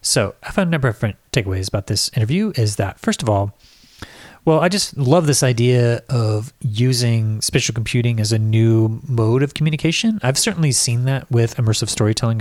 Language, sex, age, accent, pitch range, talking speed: English, male, 30-49, American, 110-135 Hz, 190 wpm